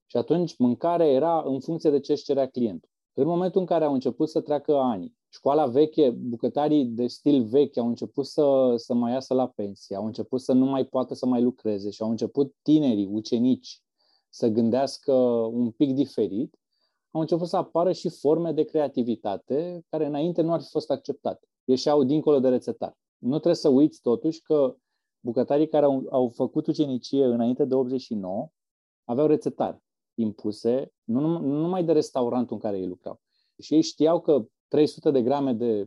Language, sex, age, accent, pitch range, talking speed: Romanian, male, 20-39, native, 125-160 Hz, 175 wpm